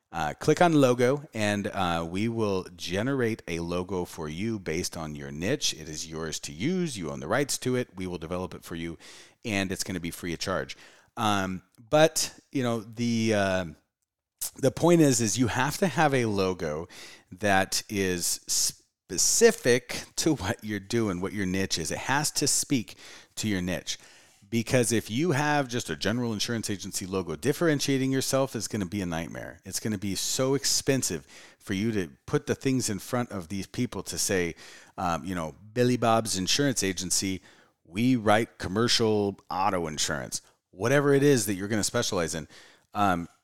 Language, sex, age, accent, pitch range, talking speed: English, male, 30-49, American, 90-120 Hz, 185 wpm